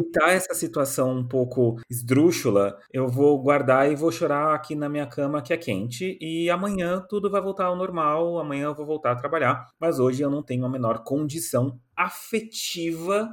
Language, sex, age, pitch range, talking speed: Portuguese, male, 30-49, 125-180 Hz, 185 wpm